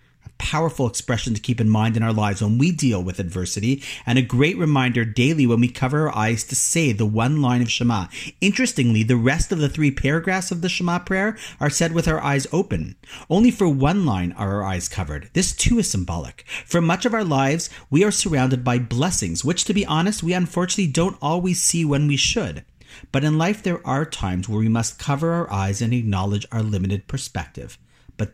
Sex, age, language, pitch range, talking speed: male, 40-59, English, 115-165 Hz, 210 wpm